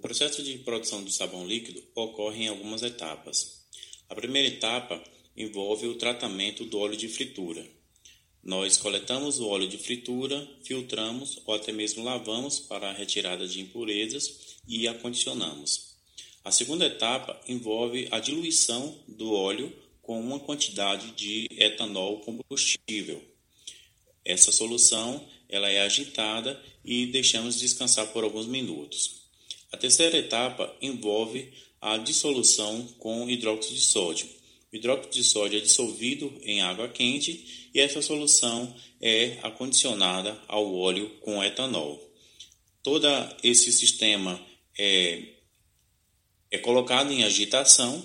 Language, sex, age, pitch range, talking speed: English, male, 20-39, 105-125 Hz, 125 wpm